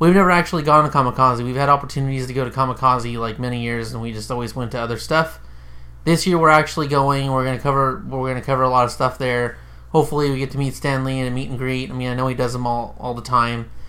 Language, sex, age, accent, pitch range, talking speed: English, male, 30-49, American, 125-155 Hz, 270 wpm